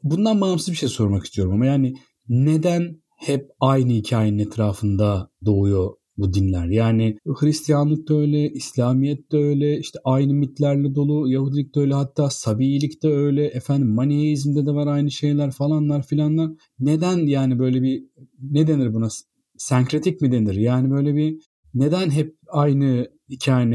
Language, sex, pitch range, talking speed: Turkish, male, 120-150 Hz, 150 wpm